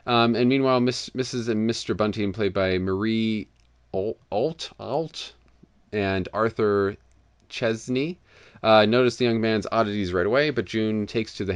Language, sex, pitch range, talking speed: English, male, 90-120 Hz, 150 wpm